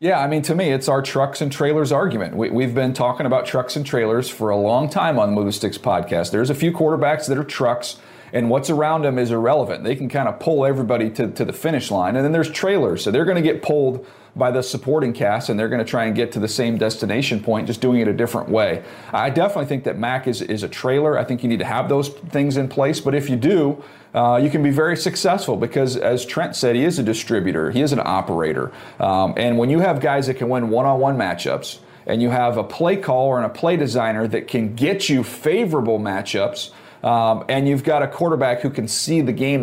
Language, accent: English, American